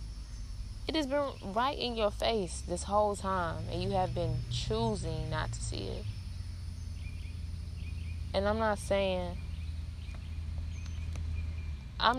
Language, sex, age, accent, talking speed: English, female, 20-39, American, 120 wpm